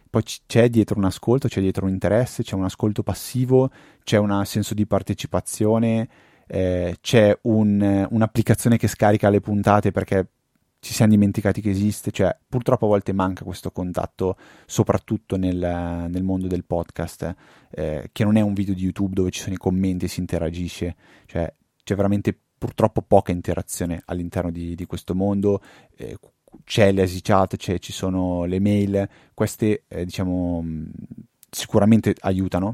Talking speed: 150 wpm